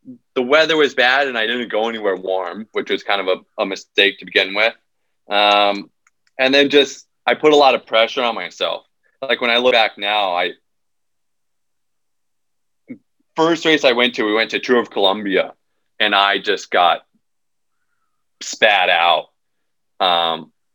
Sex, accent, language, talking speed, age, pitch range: male, American, English, 165 wpm, 20-39, 100-120 Hz